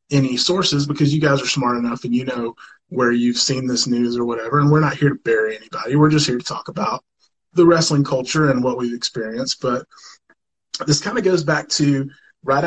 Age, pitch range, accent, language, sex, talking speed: 20-39, 125-165 Hz, American, English, male, 220 wpm